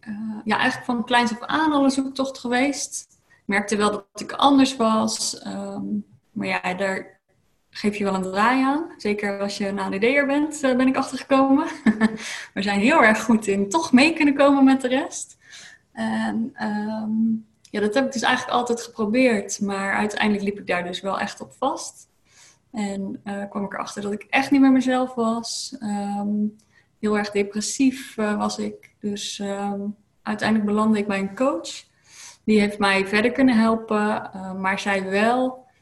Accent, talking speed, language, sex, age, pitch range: Dutch, 180 wpm, Dutch, female, 20-39, 200-245 Hz